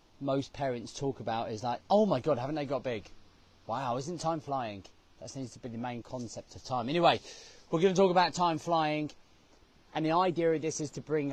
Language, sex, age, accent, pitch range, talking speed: English, male, 30-49, British, 125-170 Hz, 220 wpm